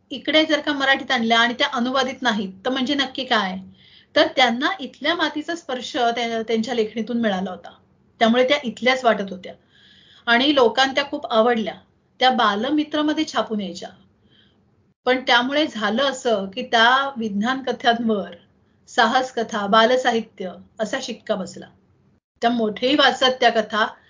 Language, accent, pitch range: Marathi, native, 220-270 Hz